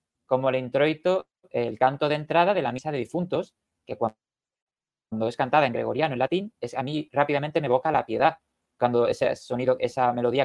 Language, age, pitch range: Spanish, 20-39, 125-175 Hz